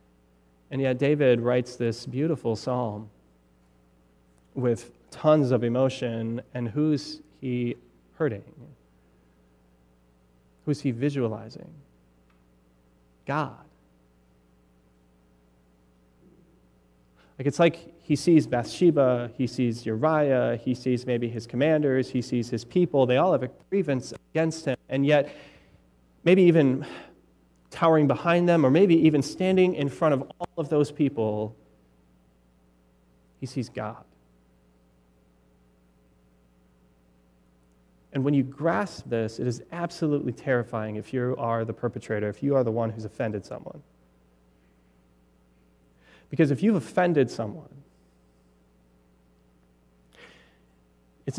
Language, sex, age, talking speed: English, male, 30-49, 110 wpm